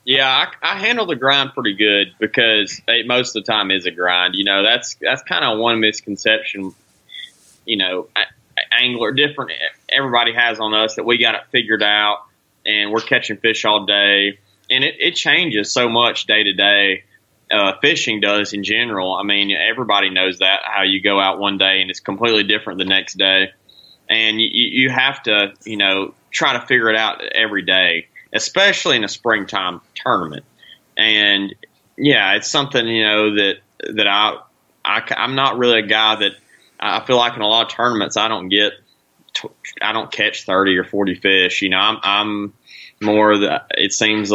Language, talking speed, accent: English, 185 wpm, American